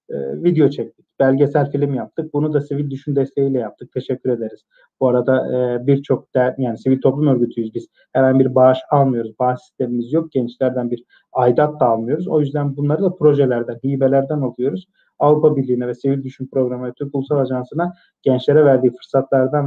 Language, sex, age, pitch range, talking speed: Turkish, male, 30-49, 130-165 Hz, 160 wpm